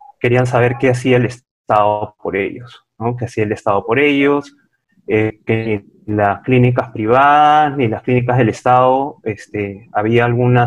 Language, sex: Spanish, male